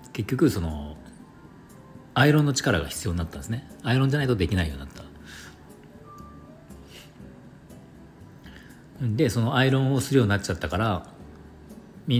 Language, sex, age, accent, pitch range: Japanese, male, 40-59, native, 85-125 Hz